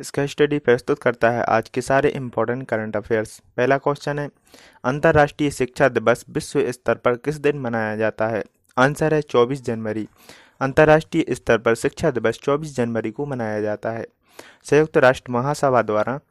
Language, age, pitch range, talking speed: Hindi, 30-49, 115-145 Hz, 160 wpm